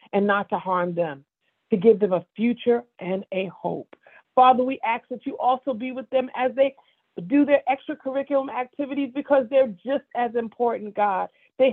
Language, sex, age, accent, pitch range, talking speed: English, female, 40-59, American, 205-260 Hz, 180 wpm